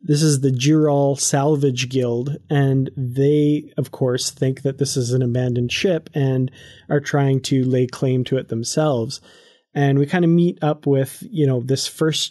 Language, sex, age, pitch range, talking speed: English, male, 30-49, 130-155 Hz, 180 wpm